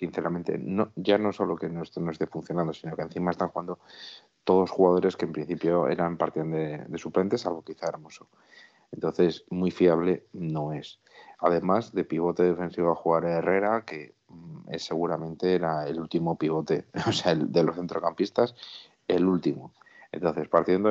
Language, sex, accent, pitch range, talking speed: Spanish, male, Spanish, 80-95 Hz, 165 wpm